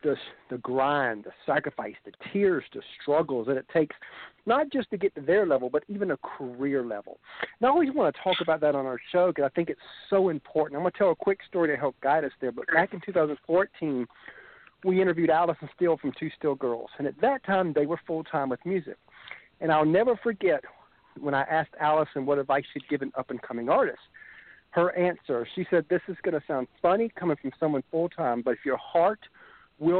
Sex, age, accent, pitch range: male, 50-69, American, 145-185 Hz